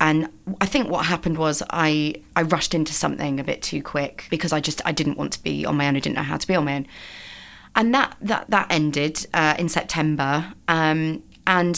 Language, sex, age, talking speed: English, female, 30-49, 230 wpm